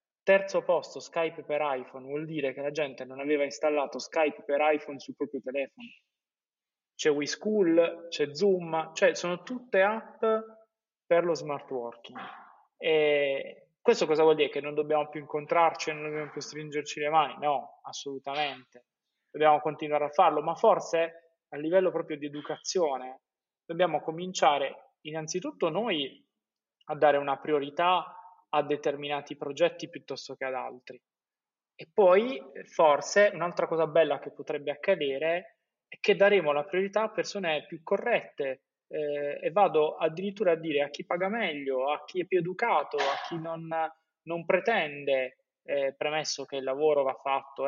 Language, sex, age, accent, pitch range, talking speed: Italian, male, 20-39, native, 145-175 Hz, 150 wpm